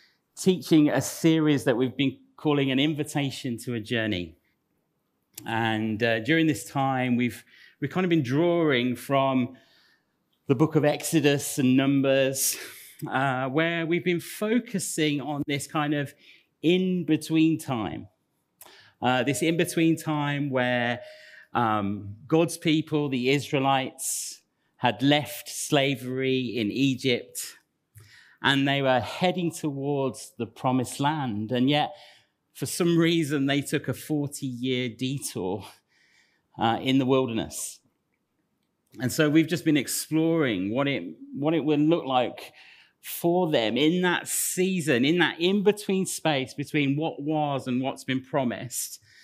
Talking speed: 130 wpm